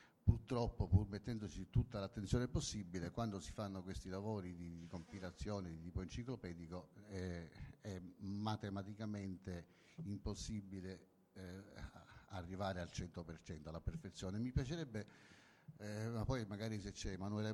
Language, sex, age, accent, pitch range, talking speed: Italian, male, 50-69, native, 90-115 Hz, 125 wpm